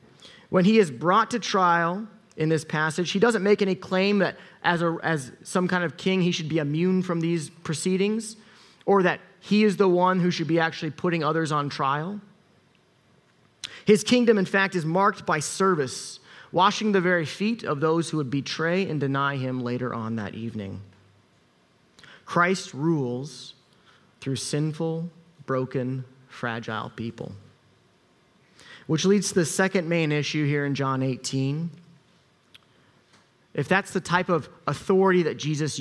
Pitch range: 140-190 Hz